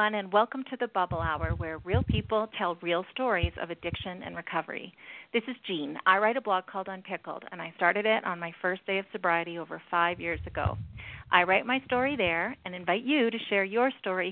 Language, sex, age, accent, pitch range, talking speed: English, female, 40-59, American, 185-240 Hz, 215 wpm